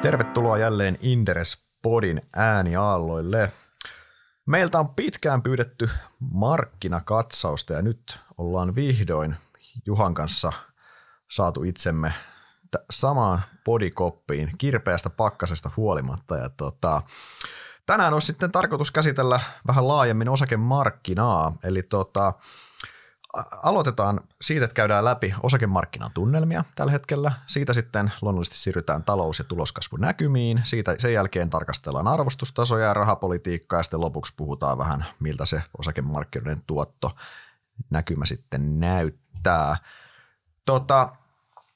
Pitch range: 90-130 Hz